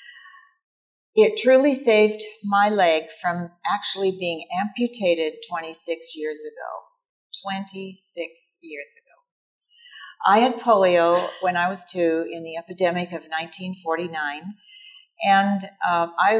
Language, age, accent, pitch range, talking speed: English, 50-69, American, 170-225 Hz, 100 wpm